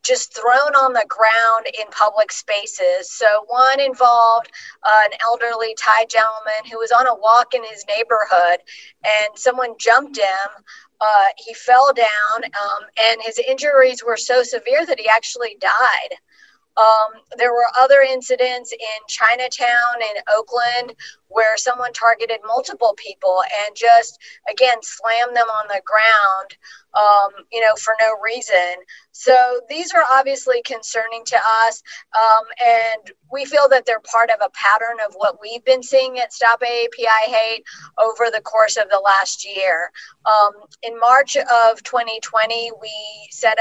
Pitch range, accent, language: 215-245 Hz, American, English